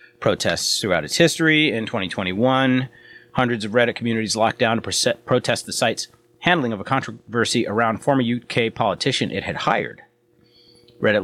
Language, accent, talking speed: English, American, 150 wpm